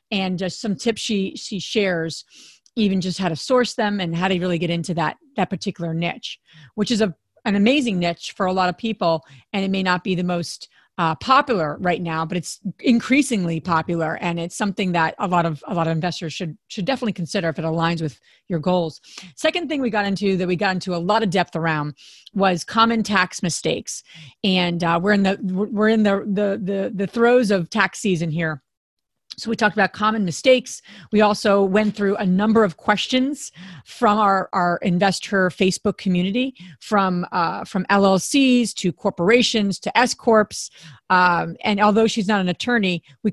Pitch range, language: 175-215 Hz, English